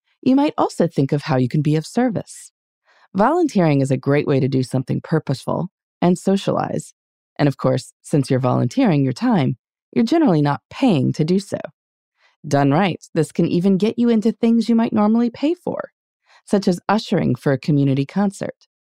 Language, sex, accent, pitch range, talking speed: English, female, American, 140-215 Hz, 185 wpm